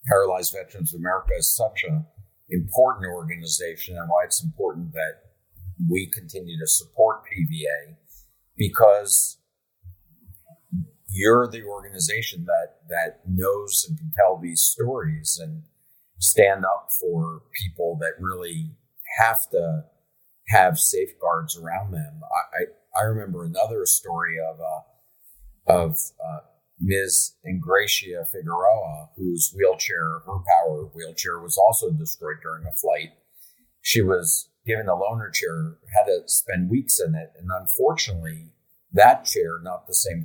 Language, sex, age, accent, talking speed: English, male, 50-69, American, 130 wpm